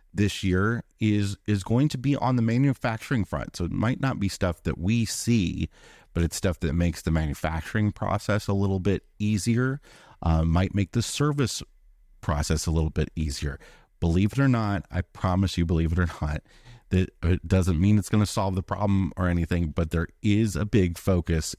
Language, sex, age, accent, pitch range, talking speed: English, male, 30-49, American, 80-100 Hz, 195 wpm